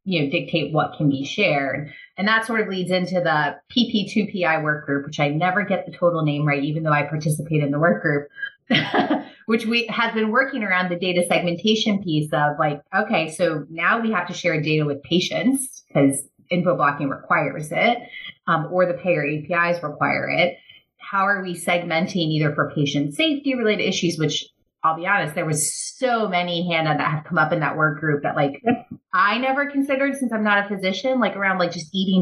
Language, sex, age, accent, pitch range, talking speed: English, female, 30-49, American, 155-215 Hz, 205 wpm